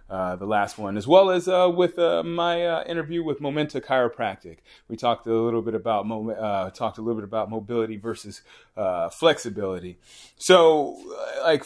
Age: 30-49